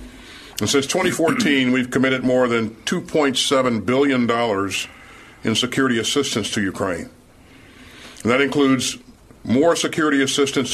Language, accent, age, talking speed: English, American, 60-79, 110 wpm